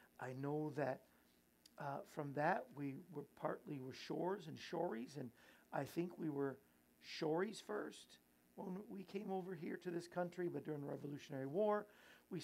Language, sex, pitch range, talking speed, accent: English, male, 130-175 Hz, 165 wpm, American